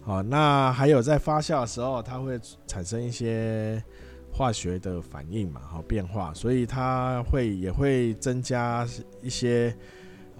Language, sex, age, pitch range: Chinese, male, 20-39, 90-120 Hz